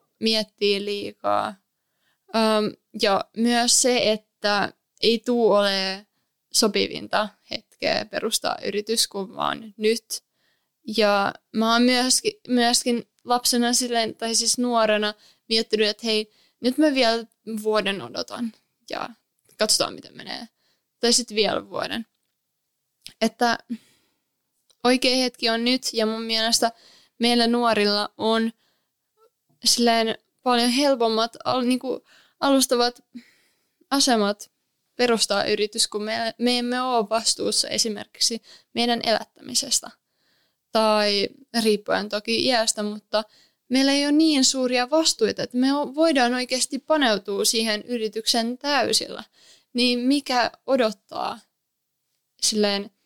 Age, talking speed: 20-39, 105 wpm